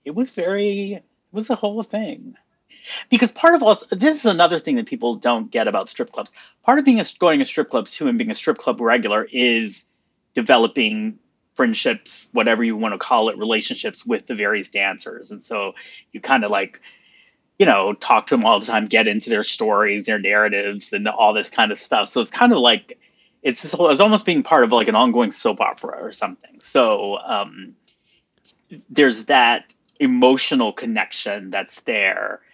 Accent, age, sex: American, 30-49, male